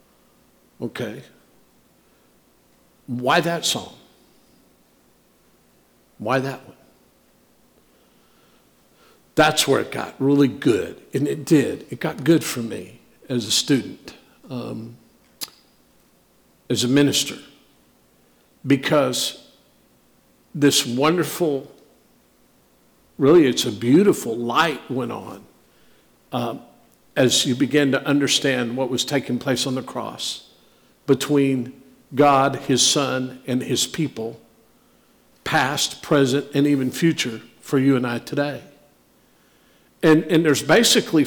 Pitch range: 125-165 Hz